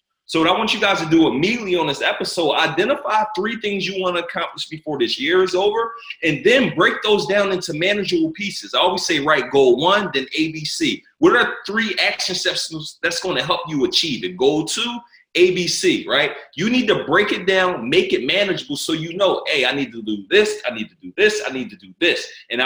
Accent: American